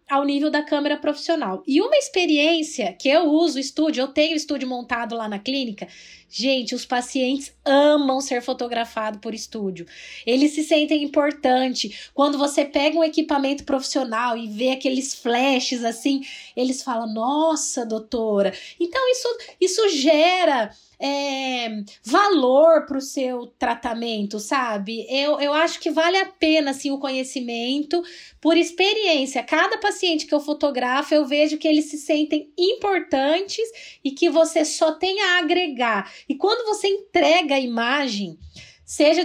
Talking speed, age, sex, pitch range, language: 145 wpm, 10-29, female, 255-325 Hz, Portuguese